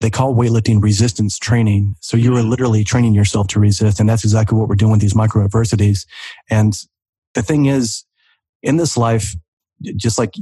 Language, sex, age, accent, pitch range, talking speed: English, male, 30-49, American, 105-120 Hz, 185 wpm